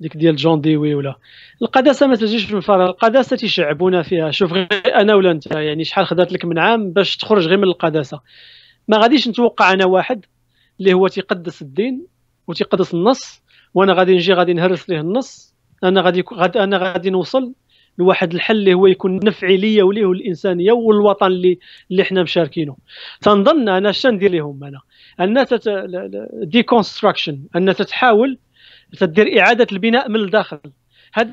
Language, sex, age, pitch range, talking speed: Arabic, male, 40-59, 175-230 Hz, 160 wpm